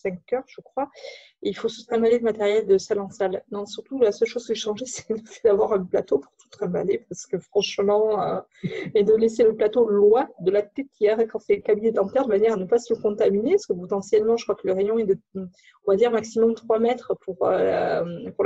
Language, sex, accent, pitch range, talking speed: French, female, French, 200-240 Hz, 250 wpm